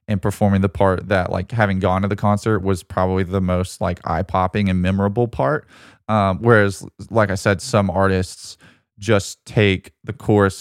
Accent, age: American, 20-39